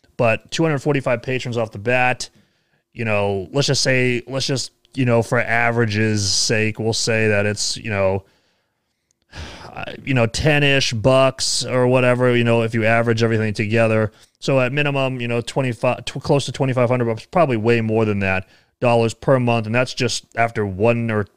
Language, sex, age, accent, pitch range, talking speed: English, male, 30-49, American, 105-130 Hz, 175 wpm